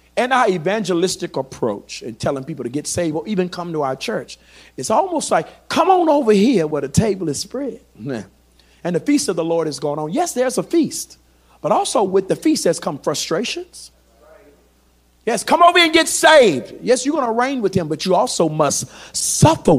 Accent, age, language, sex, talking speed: American, 50-69, English, male, 205 wpm